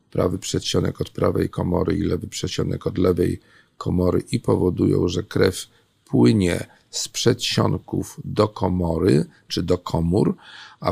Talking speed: 130 wpm